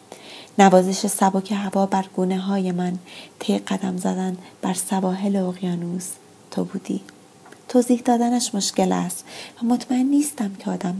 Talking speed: 130 wpm